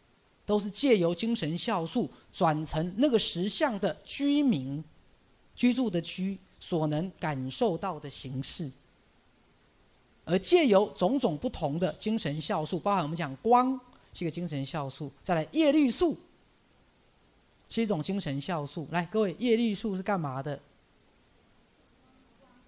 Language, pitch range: Chinese, 145-210 Hz